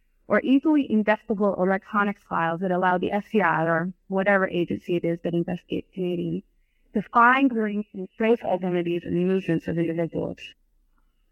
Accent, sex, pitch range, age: American, female, 180-235 Hz, 30-49